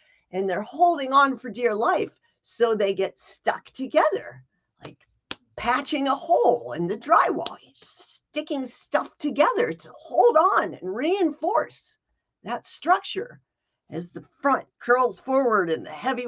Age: 50-69